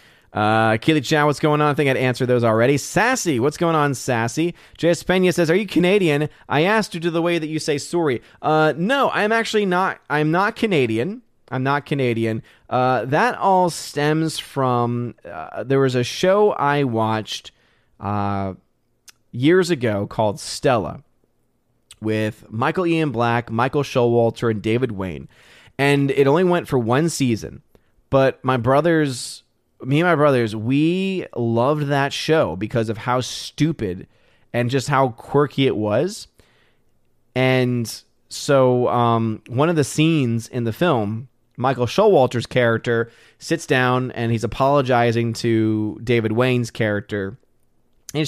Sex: male